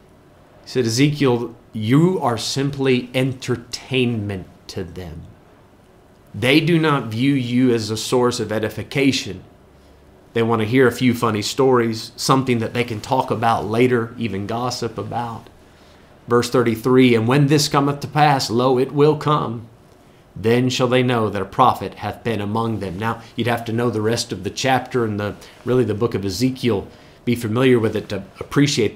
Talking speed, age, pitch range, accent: 170 wpm, 30-49, 105-125 Hz, American